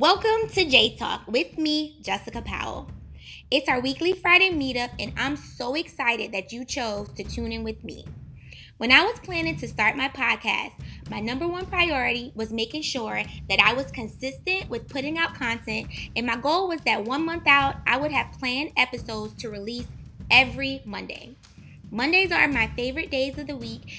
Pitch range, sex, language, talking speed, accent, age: 225-305 Hz, female, English, 180 wpm, American, 20-39